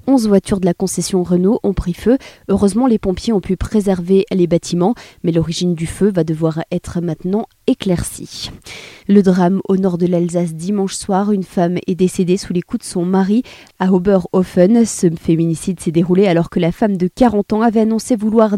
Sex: female